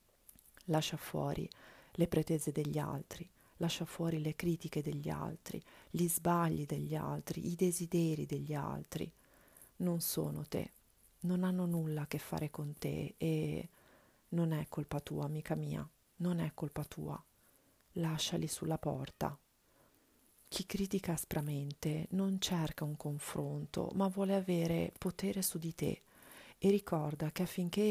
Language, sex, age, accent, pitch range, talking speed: Italian, female, 40-59, native, 150-180 Hz, 135 wpm